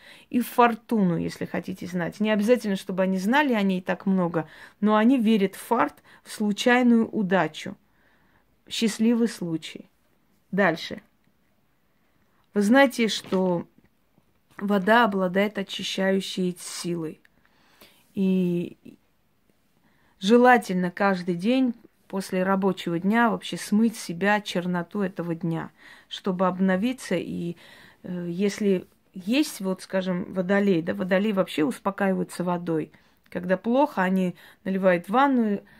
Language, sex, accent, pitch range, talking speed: Russian, female, native, 185-225 Hz, 110 wpm